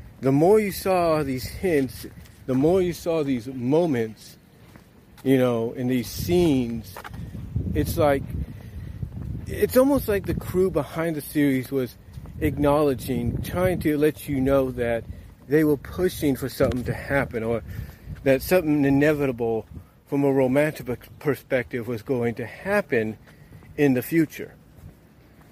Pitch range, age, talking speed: 120-170 Hz, 40-59, 135 wpm